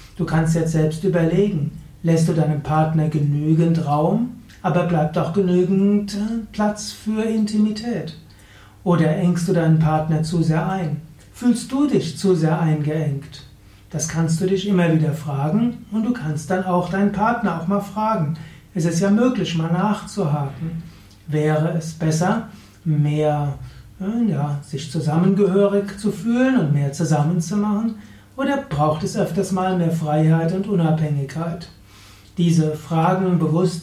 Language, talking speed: German, 140 wpm